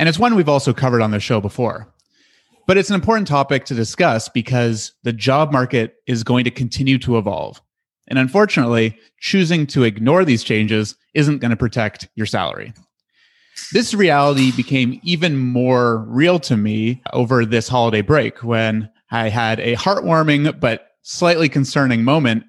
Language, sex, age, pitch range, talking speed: English, male, 30-49, 115-150 Hz, 165 wpm